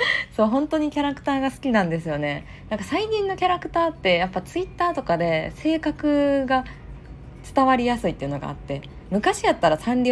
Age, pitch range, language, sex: 20-39, 140-225 Hz, Japanese, female